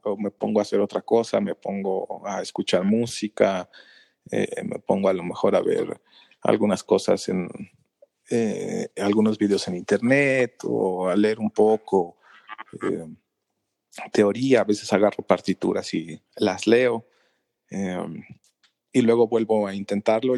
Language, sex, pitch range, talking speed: English, male, 105-125 Hz, 140 wpm